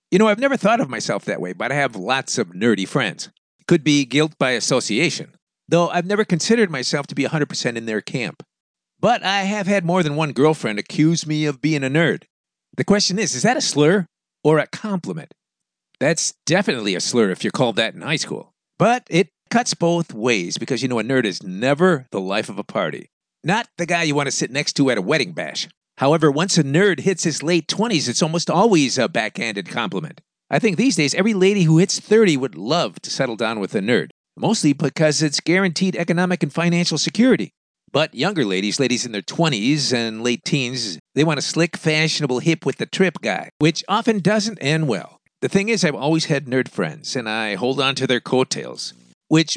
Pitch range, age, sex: 145-190 Hz, 50-69, male